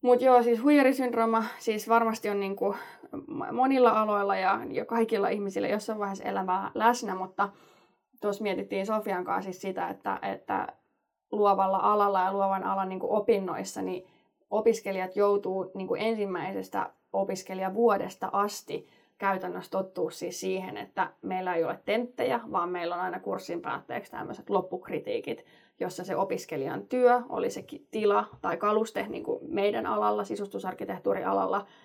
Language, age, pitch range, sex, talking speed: Finnish, 20-39, 190-230 Hz, female, 135 wpm